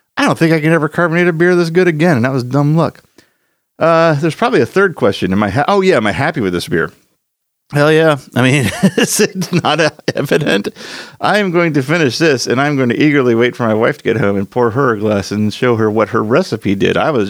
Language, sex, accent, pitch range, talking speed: English, male, American, 105-150 Hz, 255 wpm